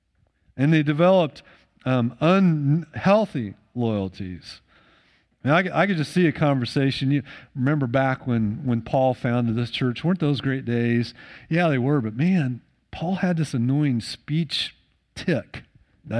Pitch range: 110-150 Hz